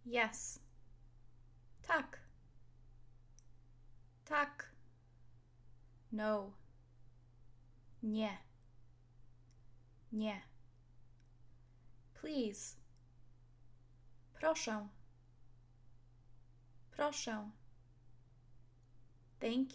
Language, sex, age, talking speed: English, female, 10-29, 30 wpm